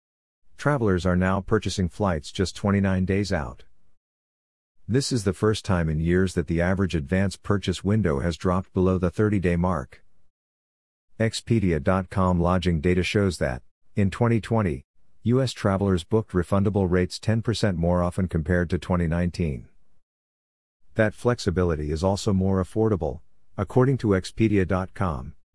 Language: English